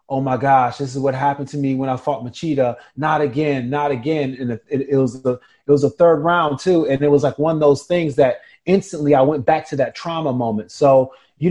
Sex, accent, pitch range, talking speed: male, American, 140-175 Hz, 245 wpm